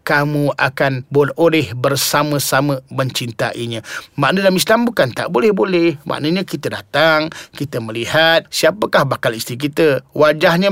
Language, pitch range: Malay, 160-250 Hz